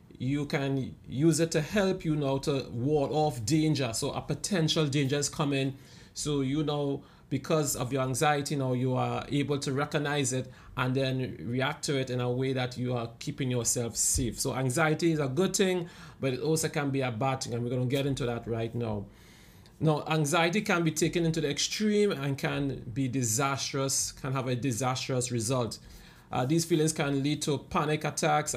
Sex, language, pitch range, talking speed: male, English, 125-150 Hz, 195 wpm